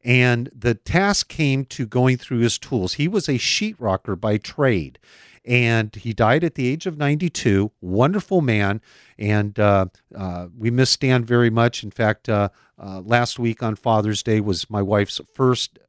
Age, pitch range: 50-69, 105-140 Hz